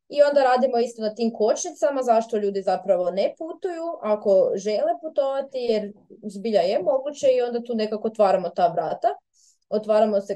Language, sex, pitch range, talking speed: Croatian, female, 200-255 Hz, 160 wpm